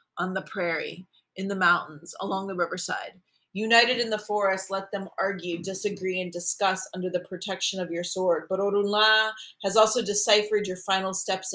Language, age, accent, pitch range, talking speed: Spanish, 30-49, American, 170-200 Hz, 170 wpm